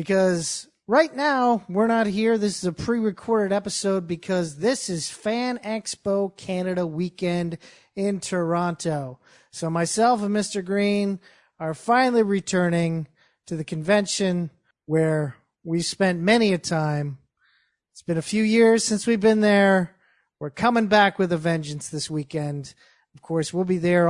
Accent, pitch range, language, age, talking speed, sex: American, 165-210 Hz, English, 30-49, 145 wpm, male